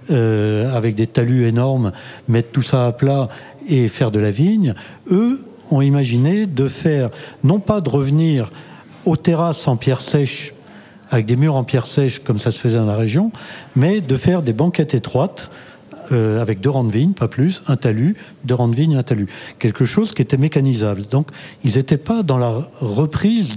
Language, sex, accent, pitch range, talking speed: French, male, French, 120-170 Hz, 195 wpm